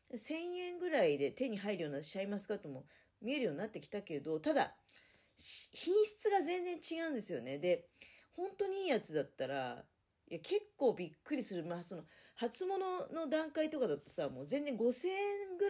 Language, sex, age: Japanese, female, 40-59